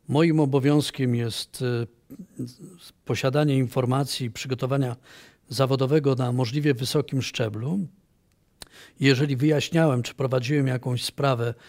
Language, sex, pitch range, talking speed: Polish, male, 125-150 Hz, 90 wpm